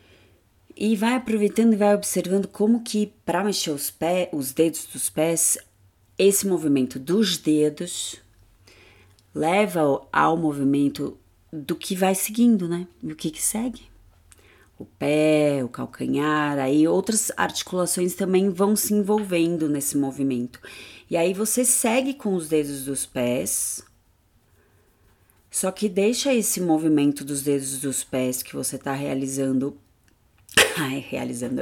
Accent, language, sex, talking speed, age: Brazilian, Portuguese, female, 130 wpm, 30-49